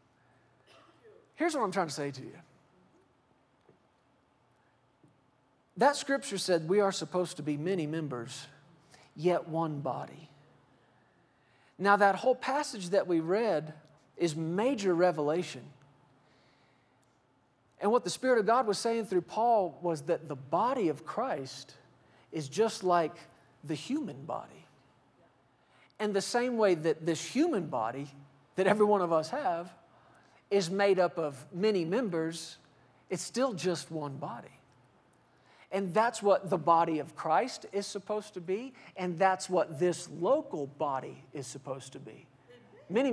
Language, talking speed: English, 140 wpm